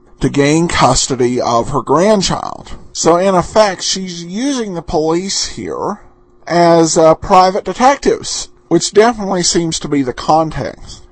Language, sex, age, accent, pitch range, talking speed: English, male, 50-69, American, 150-200 Hz, 135 wpm